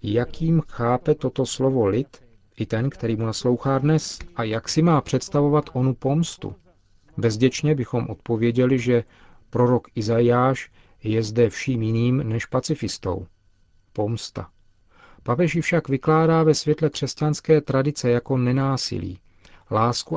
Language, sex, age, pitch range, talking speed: Czech, male, 40-59, 110-135 Hz, 120 wpm